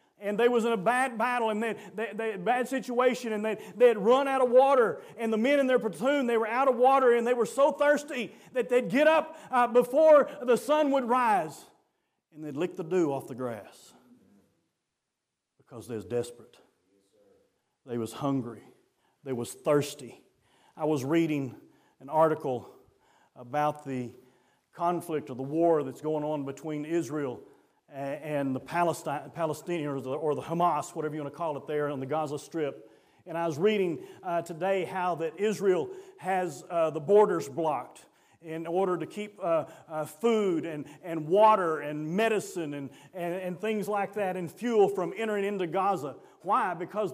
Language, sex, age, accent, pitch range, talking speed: English, male, 40-59, American, 150-230 Hz, 180 wpm